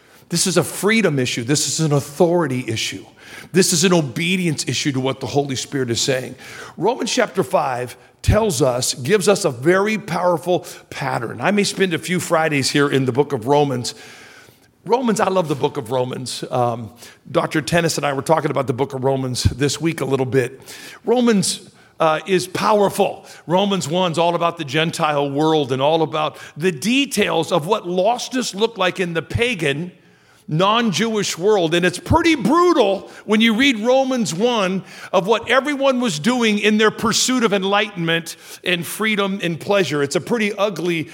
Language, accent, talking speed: English, American, 180 wpm